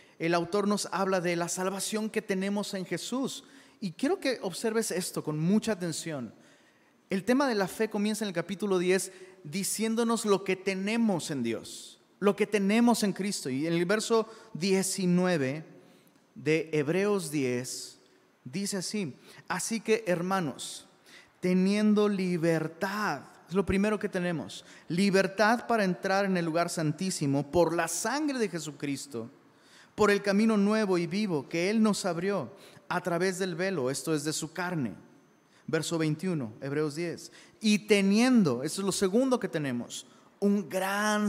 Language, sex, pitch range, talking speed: Spanish, male, 165-210 Hz, 155 wpm